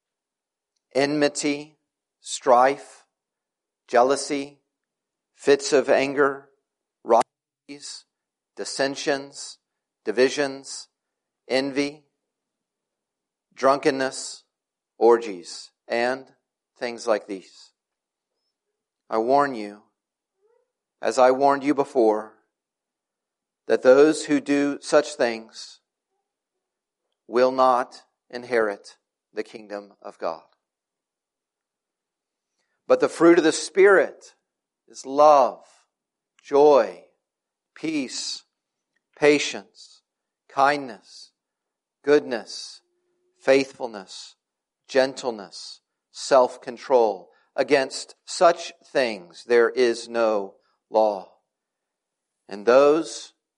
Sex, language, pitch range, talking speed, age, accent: male, English, 125-155 Hz, 70 wpm, 50-69, American